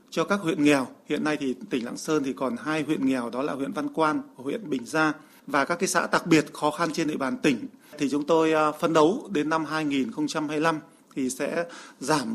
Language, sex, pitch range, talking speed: Vietnamese, male, 145-180 Hz, 225 wpm